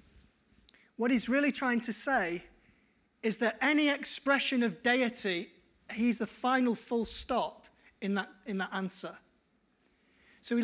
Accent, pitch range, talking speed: British, 205-245 Hz, 135 wpm